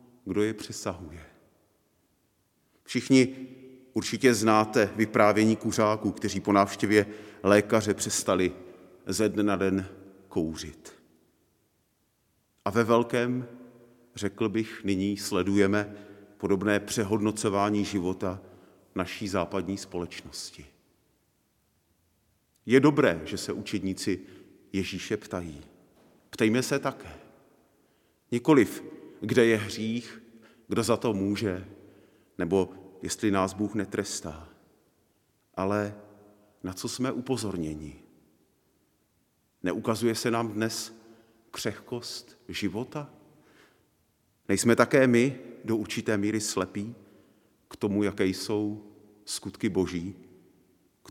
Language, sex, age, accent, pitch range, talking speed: Czech, male, 40-59, native, 95-115 Hz, 95 wpm